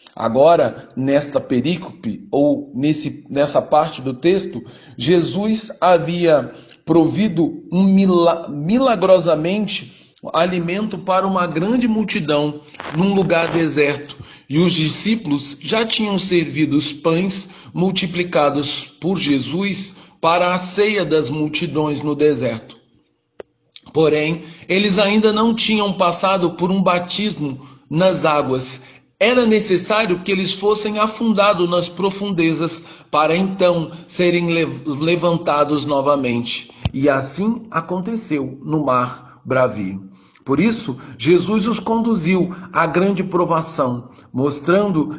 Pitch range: 150-190 Hz